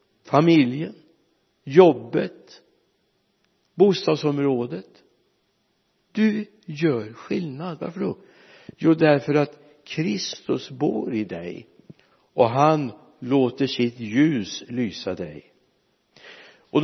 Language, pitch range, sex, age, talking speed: Swedish, 115-160 Hz, male, 60-79, 80 wpm